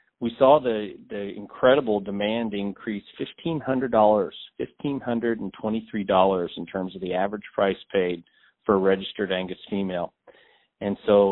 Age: 40-59